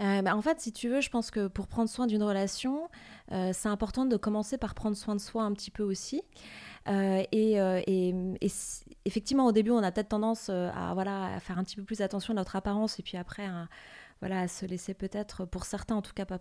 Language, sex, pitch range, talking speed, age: French, female, 195-235 Hz, 250 wpm, 30-49